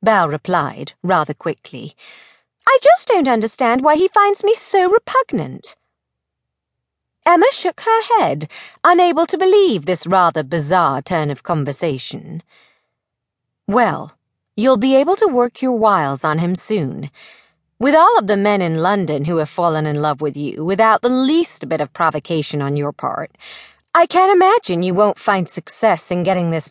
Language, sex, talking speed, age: English, female, 160 wpm, 40-59